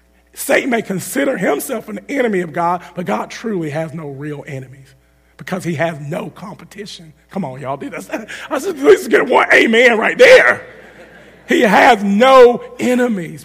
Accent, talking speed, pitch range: American, 155 wpm, 140-215 Hz